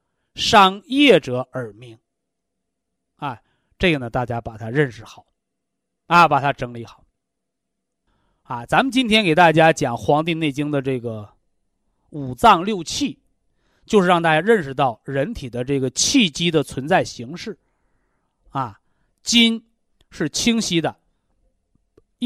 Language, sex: Chinese, male